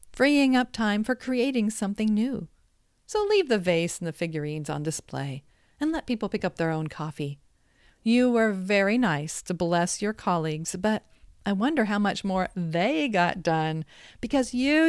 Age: 40-59